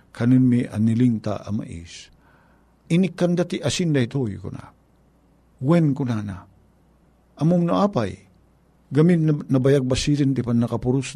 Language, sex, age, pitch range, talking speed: Filipino, male, 50-69, 125-175 Hz, 125 wpm